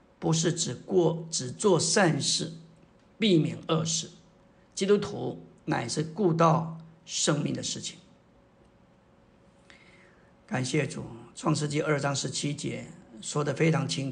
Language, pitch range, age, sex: Chinese, 145-170 Hz, 50-69, male